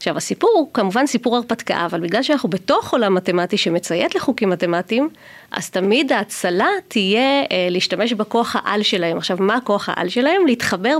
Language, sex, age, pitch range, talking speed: Hebrew, female, 30-49, 190-260 Hz, 165 wpm